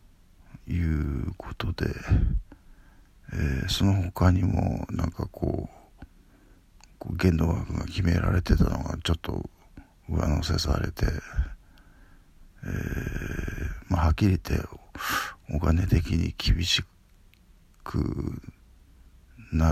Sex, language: male, Japanese